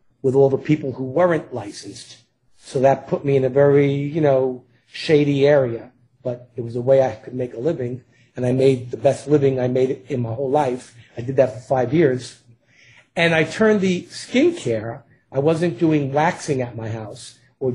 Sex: male